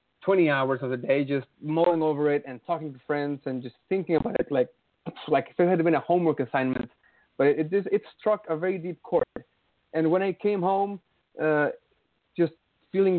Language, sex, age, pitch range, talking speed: English, male, 30-49, 145-175 Hz, 205 wpm